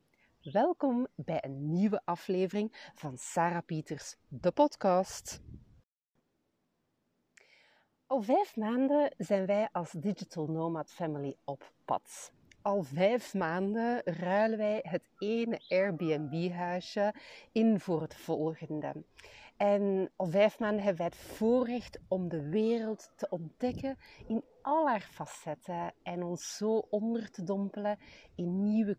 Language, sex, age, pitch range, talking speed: Dutch, female, 40-59, 165-225 Hz, 120 wpm